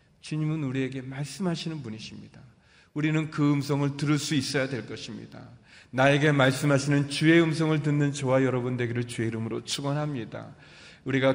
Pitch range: 135-190 Hz